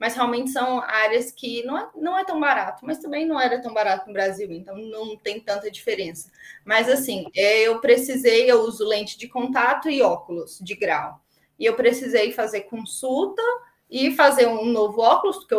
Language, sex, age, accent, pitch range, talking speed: Portuguese, female, 20-39, Brazilian, 220-285 Hz, 180 wpm